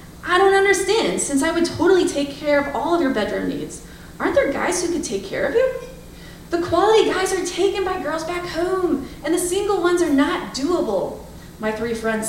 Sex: female